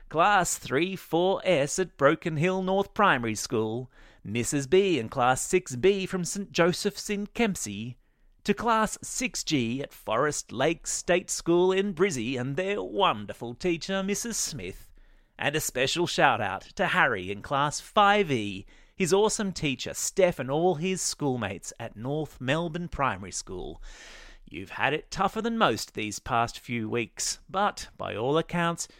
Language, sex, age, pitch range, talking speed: English, male, 30-49, 115-185 Hz, 145 wpm